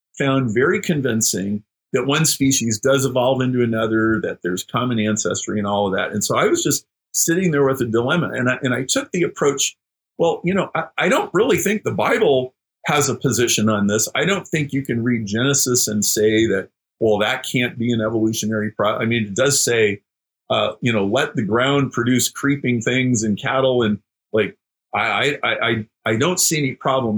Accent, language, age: American, English, 50-69